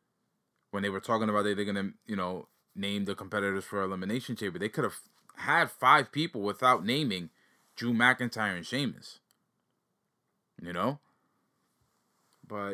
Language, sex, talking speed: English, male, 150 wpm